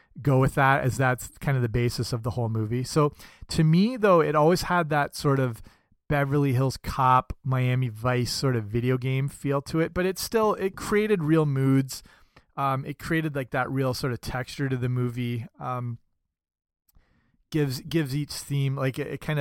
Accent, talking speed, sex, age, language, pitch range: American, 195 wpm, male, 30-49, English, 125-155 Hz